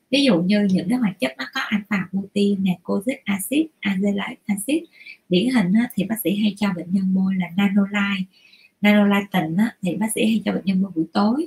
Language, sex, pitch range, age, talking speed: Vietnamese, female, 180-220 Hz, 20-39, 205 wpm